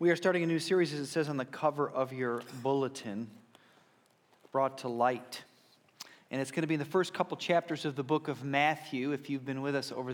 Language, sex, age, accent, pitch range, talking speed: English, male, 40-59, American, 125-150 Hz, 230 wpm